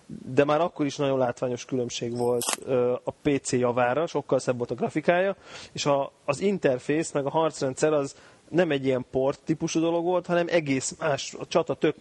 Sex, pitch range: male, 130-155 Hz